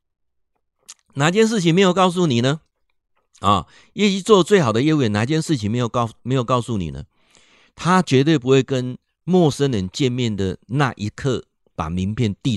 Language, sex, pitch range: Chinese, male, 110-170 Hz